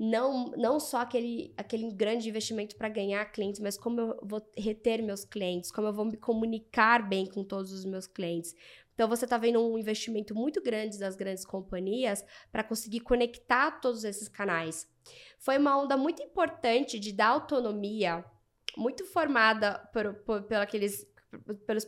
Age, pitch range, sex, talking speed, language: 10-29, 200-240 Hz, female, 165 wpm, Portuguese